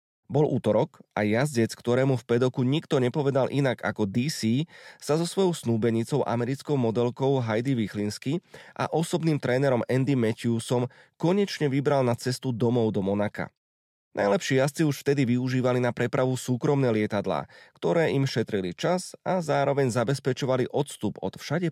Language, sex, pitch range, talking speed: Slovak, male, 110-140 Hz, 140 wpm